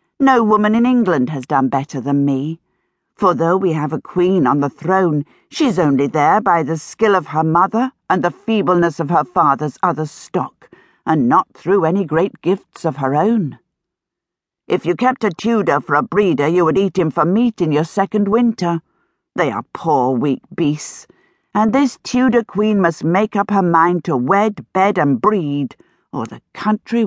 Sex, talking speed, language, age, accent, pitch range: female, 185 wpm, English, 50-69, British, 155-215 Hz